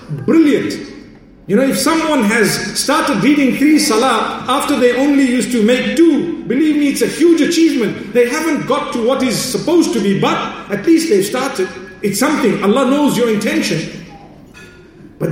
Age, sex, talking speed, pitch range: 50-69, male, 175 wpm, 185-255 Hz